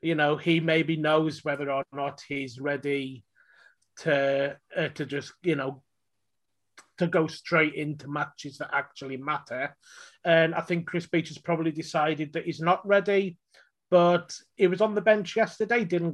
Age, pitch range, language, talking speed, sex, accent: 30-49, 145-175 Hz, English, 165 wpm, male, British